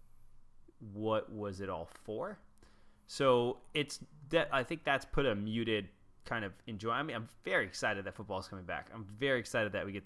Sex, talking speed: male, 205 wpm